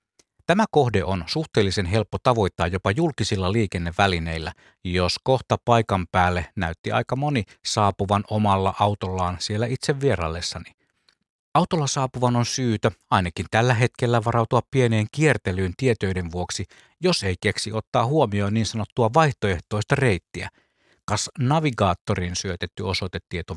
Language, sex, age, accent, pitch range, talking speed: Finnish, male, 60-79, native, 95-125 Hz, 120 wpm